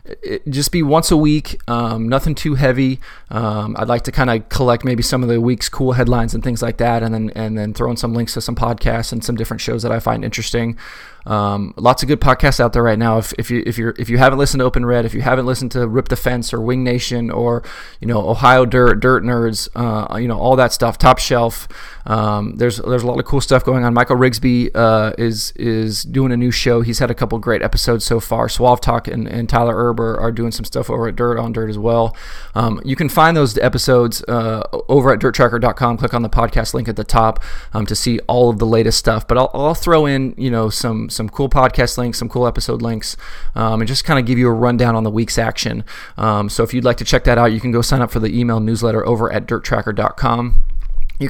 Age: 20-39